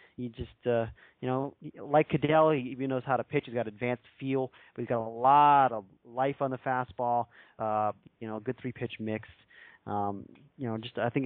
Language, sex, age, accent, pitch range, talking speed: English, male, 30-49, American, 115-135 Hz, 220 wpm